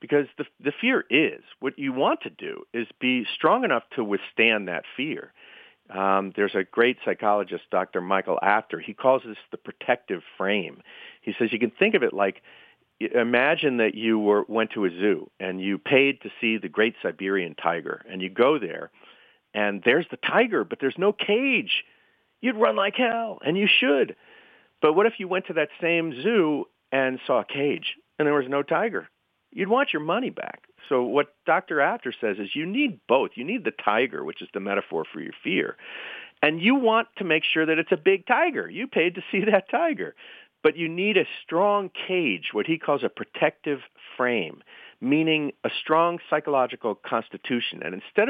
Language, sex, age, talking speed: English, male, 40-59, 195 wpm